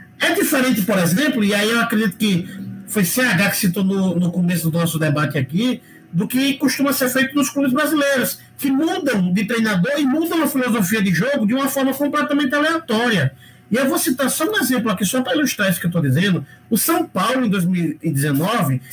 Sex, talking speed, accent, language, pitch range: male, 205 wpm, Brazilian, Portuguese, 195-275 Hz